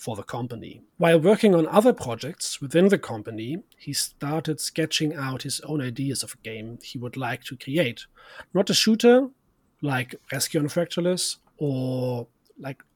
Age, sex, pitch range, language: 40-59, male, 125-170 Hz, English